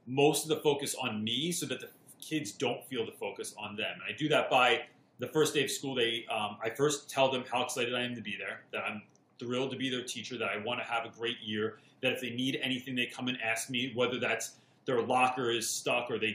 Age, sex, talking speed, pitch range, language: 30-49, male, 265 wpm, 115-140 Hz, English